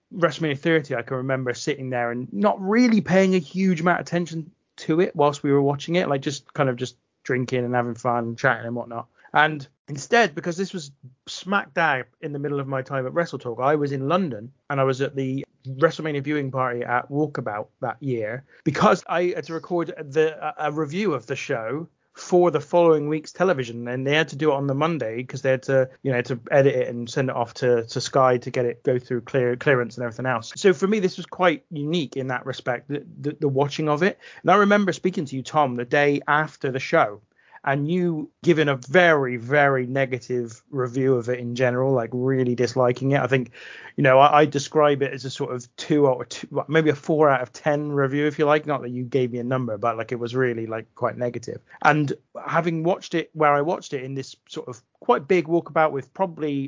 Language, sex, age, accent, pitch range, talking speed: English, male, 30-49, British, 125-155 Hz, 230 wpm